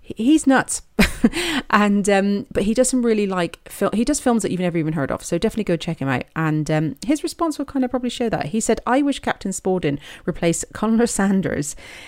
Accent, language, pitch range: British, English, 160-220 Hz